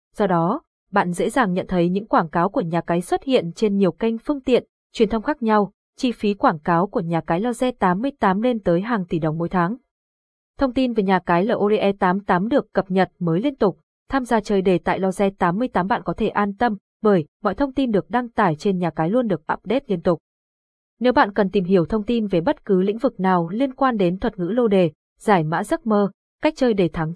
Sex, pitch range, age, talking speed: female, 180-235 Hz, 20-39, 235 wpm